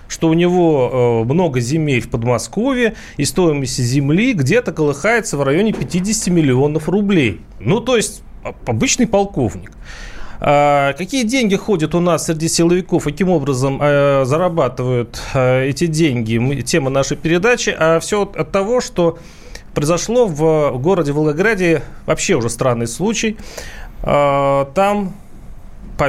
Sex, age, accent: male, 30-49, native